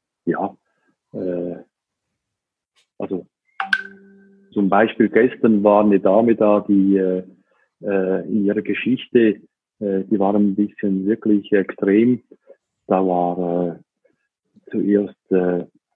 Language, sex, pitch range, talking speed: German, male, 100-115 Hz, 100 wpm